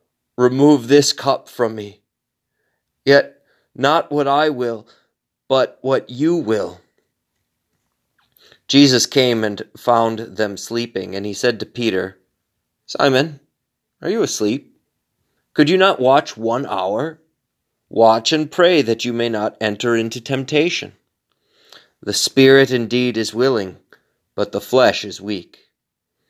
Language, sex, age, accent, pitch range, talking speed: English, male, 30-49, American, 105-140 Hz, 125 wpm